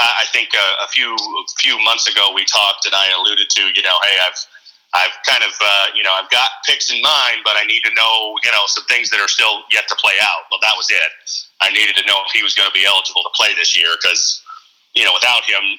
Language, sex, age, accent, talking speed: English, male, 40-59, American, 265 wpm